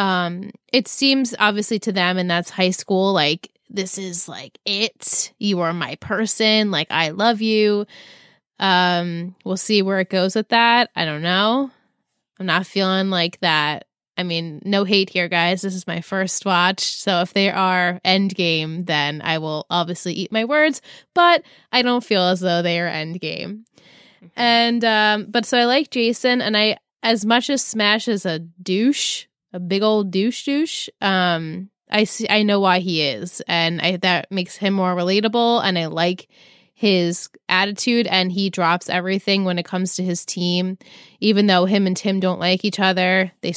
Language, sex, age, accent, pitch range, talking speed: English, female, 20-39, American, 180-215 Hz, 185 wpm